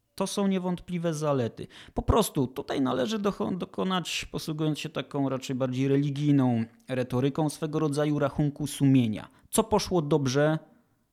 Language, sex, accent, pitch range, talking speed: Polish, male, native, 135-170 Hz, 125 wpm